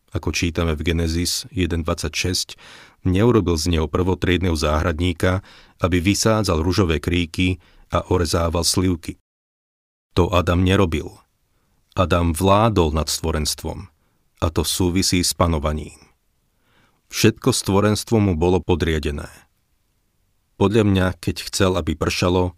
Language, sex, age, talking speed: Slovak, male, 40-59, 105 wpm